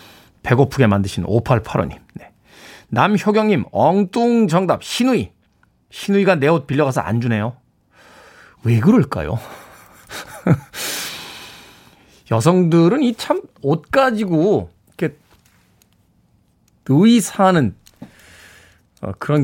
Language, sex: Korean, male